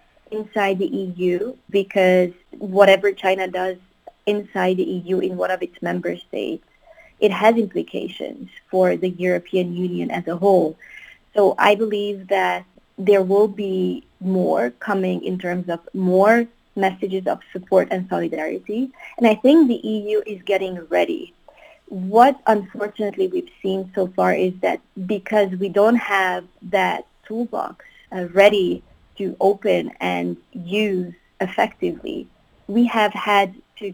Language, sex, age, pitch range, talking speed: English, female, 20-39, 185-215 Hz, 135 wpm